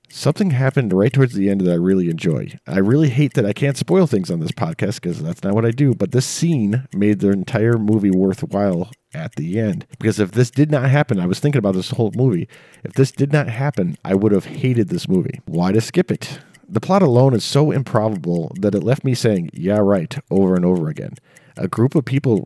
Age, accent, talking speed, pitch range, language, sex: 40-59, American, 230 wpm, 100-145 Hz, English, male